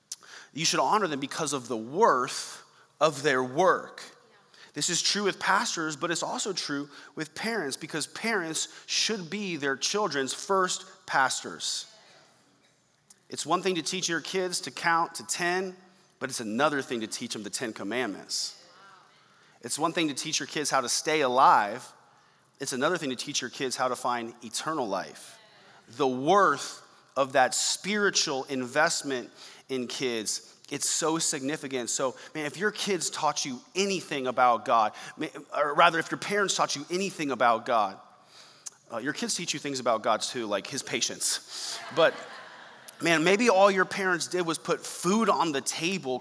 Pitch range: 140-185 Hz